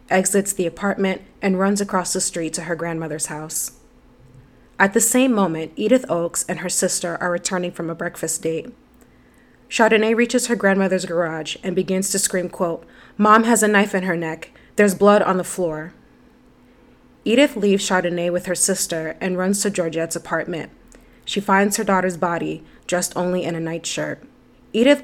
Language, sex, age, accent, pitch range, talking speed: English, female, 20-39, American, 170-200 Hz, 170 wpm